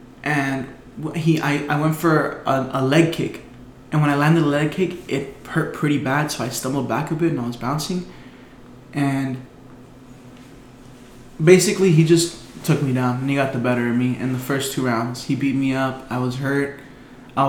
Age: 20-39